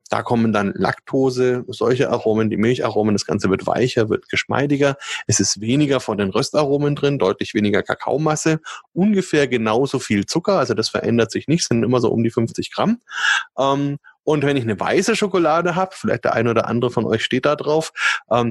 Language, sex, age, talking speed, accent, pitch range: German, male, 30-49, 190 wpm, German, 110-140 Hz